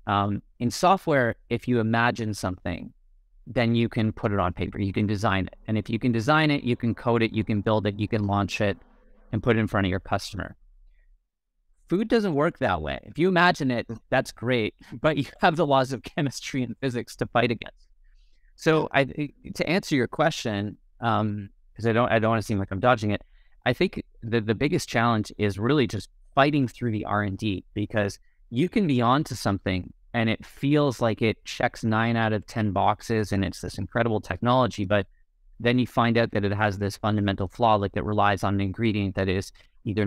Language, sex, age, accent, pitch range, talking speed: English, male, 30-49, American, 100-125 Hz, 205 wpm